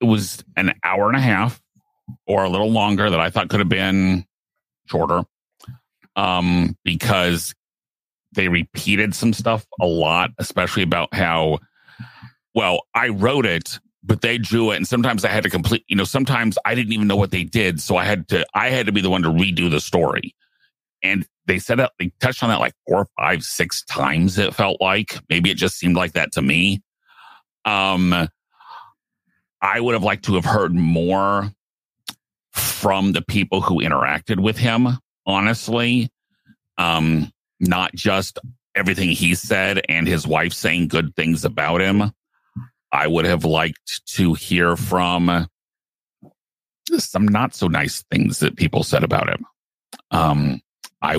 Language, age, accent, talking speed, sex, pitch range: English, 40-59, American, 165 wpm, male, 85-110 Hz